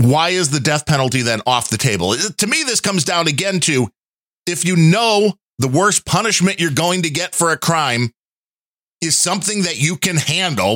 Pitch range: 120-175 Hz